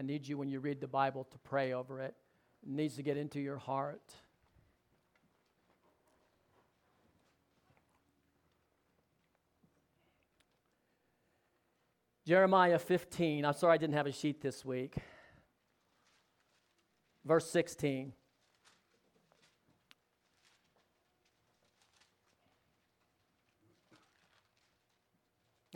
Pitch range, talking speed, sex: 135-165 Hz, 75 wpm, male